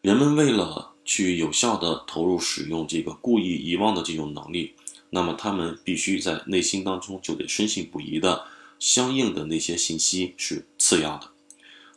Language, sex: Chinese, male